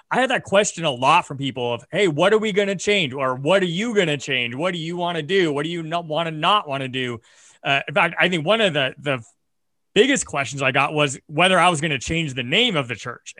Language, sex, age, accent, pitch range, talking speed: English, male, 30-49, American, 140-175 Hz, 285 wpm